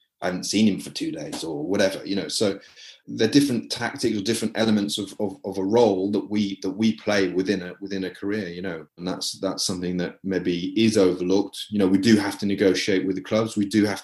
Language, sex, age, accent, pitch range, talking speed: English, male, 30-49, British, 90-100 Hz, 250 wpm